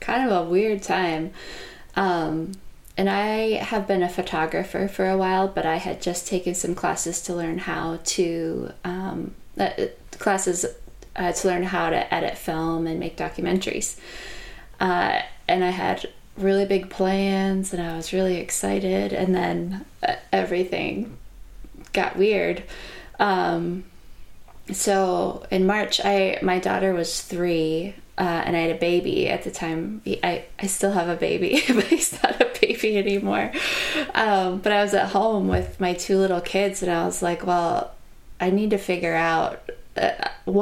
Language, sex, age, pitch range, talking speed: English, female, 20-39, 170-195 Hz, 160 wpm